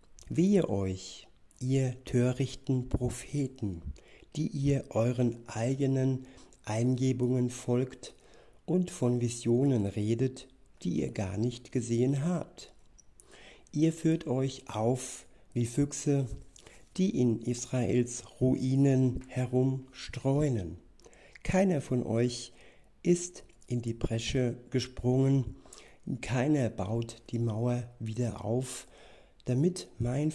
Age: 60-79